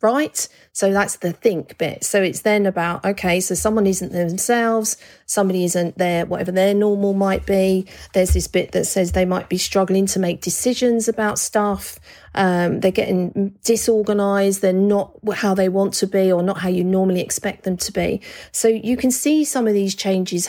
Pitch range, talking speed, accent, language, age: 185-220 Hz, 195 wpm, British, English, 40-59